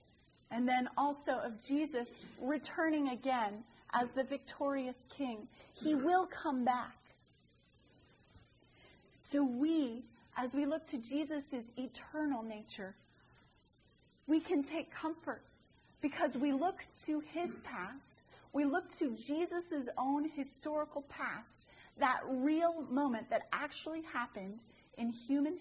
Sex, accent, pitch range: female, American, 235-295 Hz